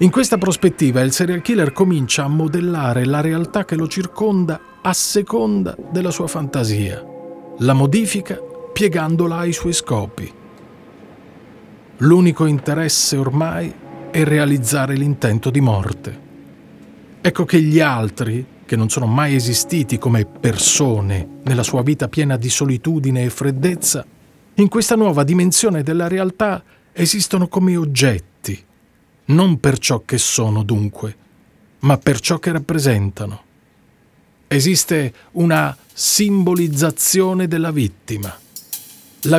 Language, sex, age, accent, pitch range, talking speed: Italian, male, 40-59, native, 130-180 Hz, 120 wpm